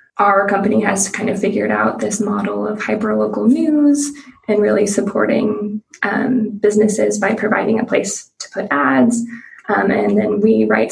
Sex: female